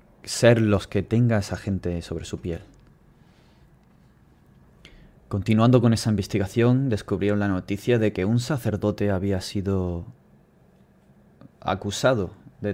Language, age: Spanish, 30-49